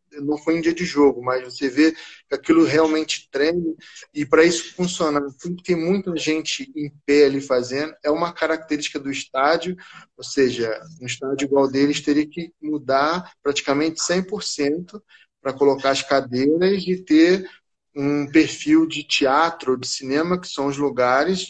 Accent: Brazilian